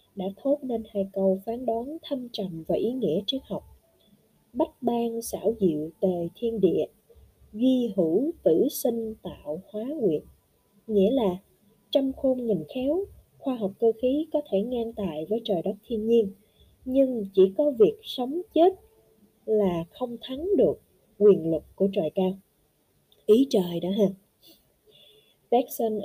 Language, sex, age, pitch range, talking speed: Vietnamese, female, 20-39, 190-260 Hz, 155 wpm